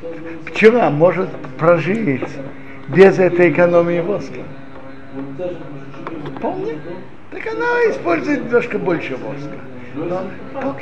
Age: 60-79